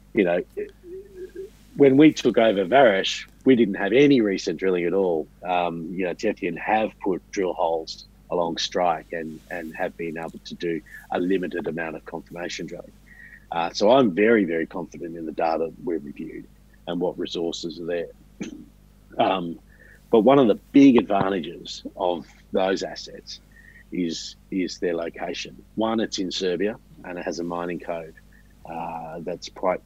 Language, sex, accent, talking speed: English, male, Australian, 165 wpm